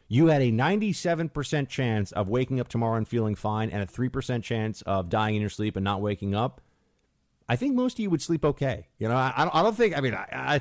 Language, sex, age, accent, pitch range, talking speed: English, male, 30-49, American, 100-160 Hz, 245 wpm